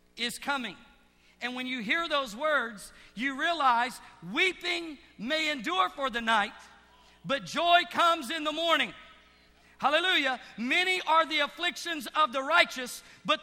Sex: male